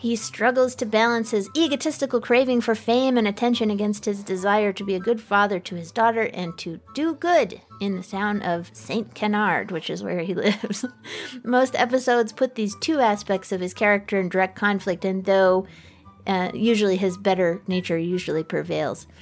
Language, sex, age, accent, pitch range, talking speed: English, female, 30-49, American, 180-230 Hz, 180 wpm